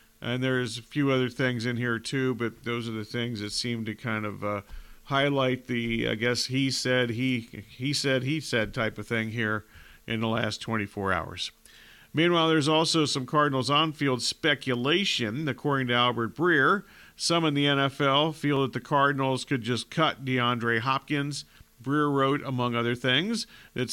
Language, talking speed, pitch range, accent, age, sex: English, 175 wpm, 120-140 Hz, American, 50-69, male